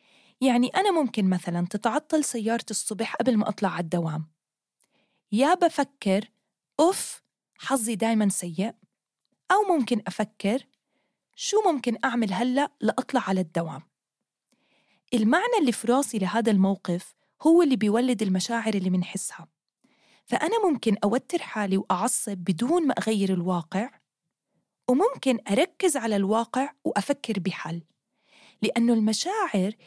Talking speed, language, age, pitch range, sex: 115 wpm, English, 20-39, 195-265 Hz, female